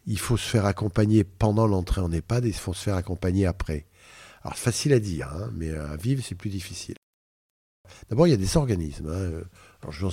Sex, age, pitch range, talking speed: male, 50-69, 90-130 Hz, 220 wpm